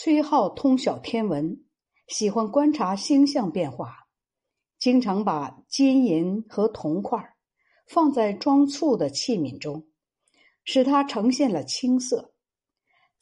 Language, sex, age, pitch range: Chinese, female, 60-79, 190-275 Hz